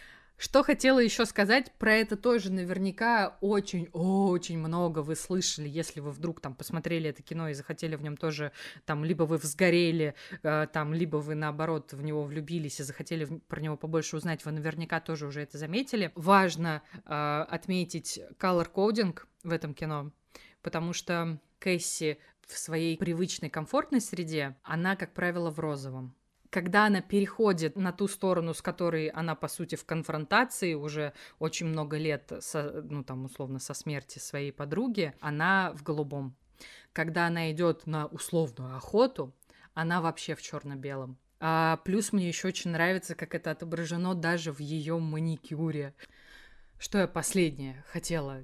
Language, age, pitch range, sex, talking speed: Russian, 20-39, 150-180 Hz, female, 150 wpm